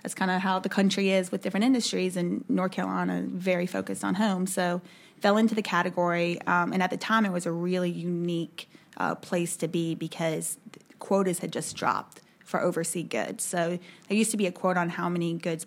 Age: 20-39